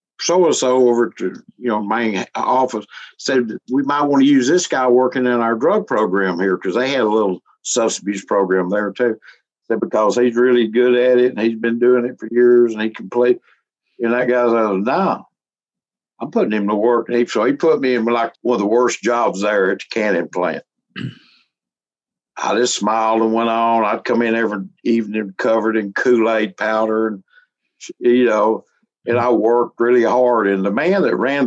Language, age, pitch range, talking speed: English, 60-79, 110-125 Hz, 200 wpm